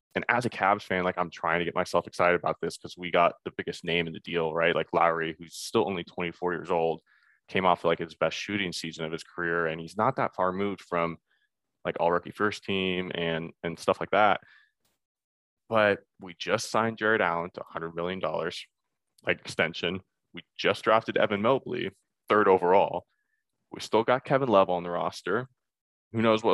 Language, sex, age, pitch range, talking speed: English, male, 20-39, 85-105 Hz, 200 wpm